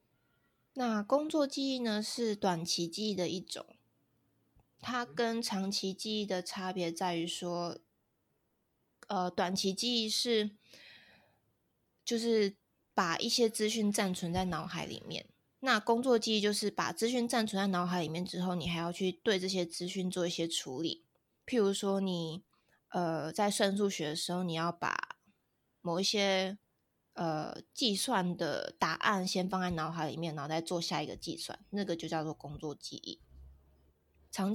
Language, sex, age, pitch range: Chinese, female, 20-39, 170-210 Hz